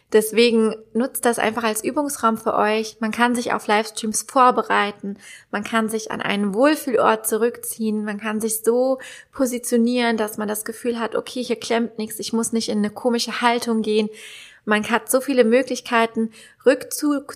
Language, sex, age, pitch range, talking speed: German, female, 20-39, 210-240 Hz, 170 wpm